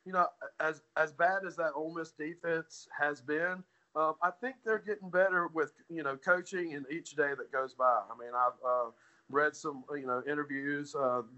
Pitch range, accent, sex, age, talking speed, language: 145-185 Hz, American, male, 40-59, 200 wpm, English